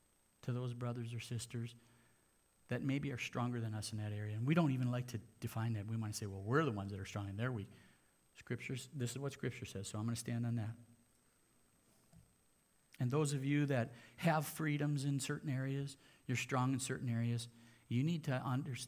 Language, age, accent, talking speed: English, 50-69, American, 215 wpm